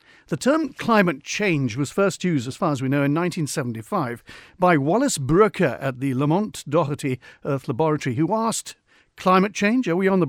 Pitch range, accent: 140-190 Hz, British